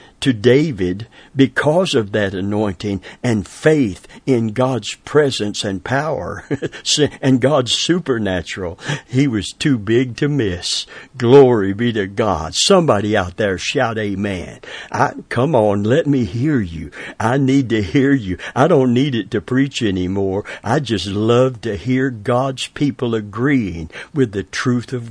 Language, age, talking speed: English, 60-79, 145 wpm